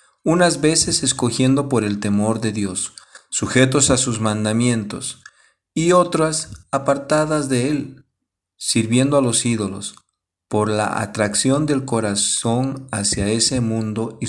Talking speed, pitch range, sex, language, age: 125 wpm, 100-125 Hz, male, Spanish, 40-59